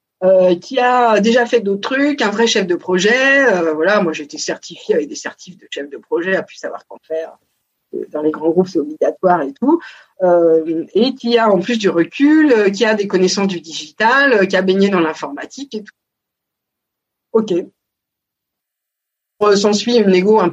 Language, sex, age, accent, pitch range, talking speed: French, female, 50-69, French, 175-235 Hz, 195 wpm